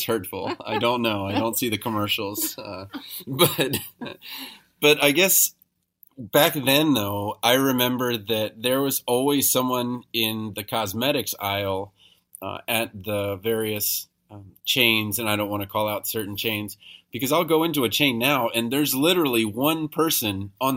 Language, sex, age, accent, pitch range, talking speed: English, male, 30-49, American, 105-125 Hz, 160 wpm